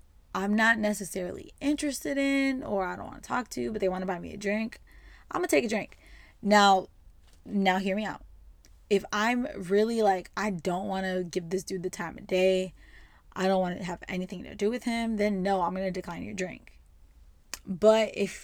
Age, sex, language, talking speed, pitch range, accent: 20-39, female, English, 215 wpm, 185-225 Hz, American